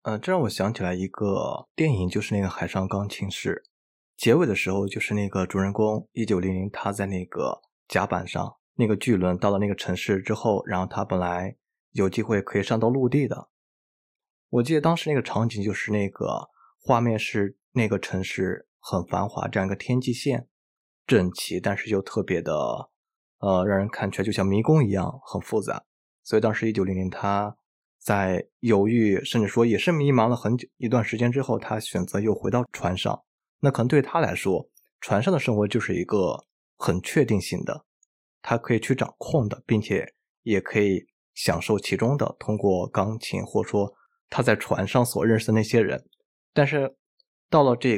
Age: 20-39